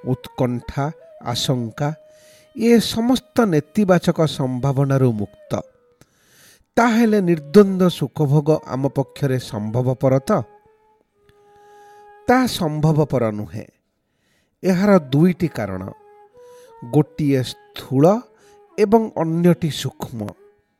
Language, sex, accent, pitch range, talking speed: English, male, Indian, 145-235 Hz, 65 wpm